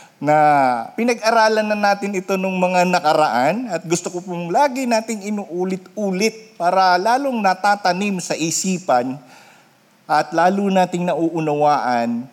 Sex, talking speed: male, 115 wpm